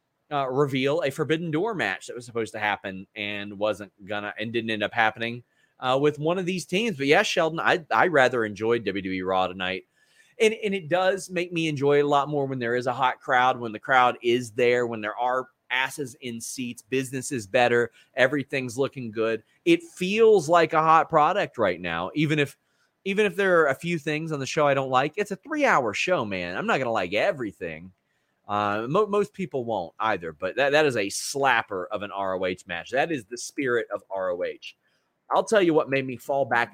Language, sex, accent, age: English, male, American, 30-49